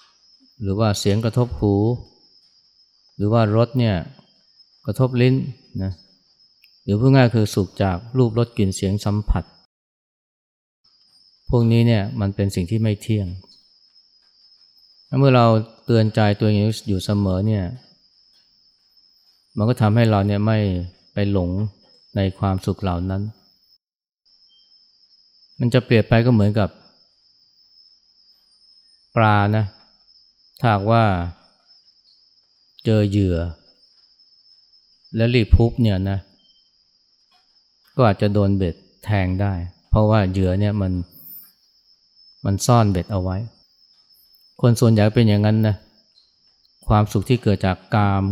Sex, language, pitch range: male, Thai, 95-115 Hz